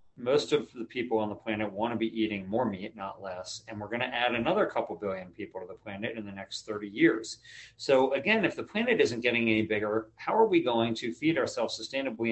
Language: English